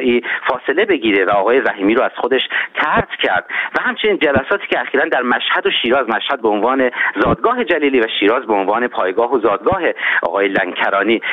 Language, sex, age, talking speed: Persian, male, 40-59, 175 wpm